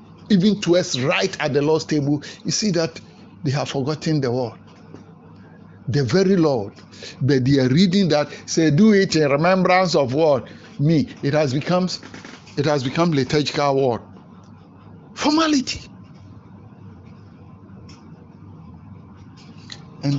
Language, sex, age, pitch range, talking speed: English, male, 60-79, 130-190 Hz, 125 wpm